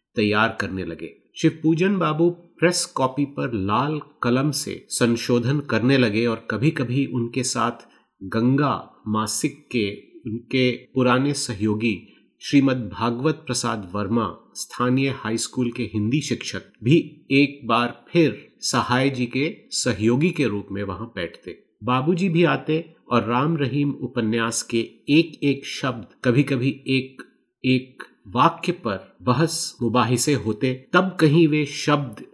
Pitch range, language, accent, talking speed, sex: 115-150 Hz, Hindi, native, 130 wpm, male